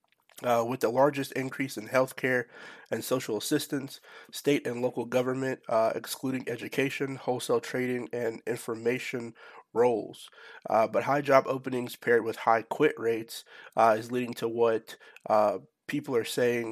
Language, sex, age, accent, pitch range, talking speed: English, male, 30-49, American, 115-130 Hz, 150 wpm